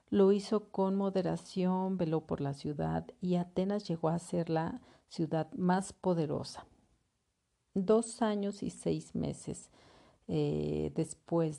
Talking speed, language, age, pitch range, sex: 125 wpm, Spanish, 50-69, 150-190 Hz, female